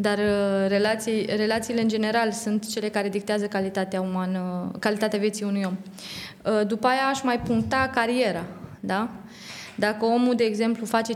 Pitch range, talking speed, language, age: 200-230 Hz, 155 wpm, Romanian, 20-39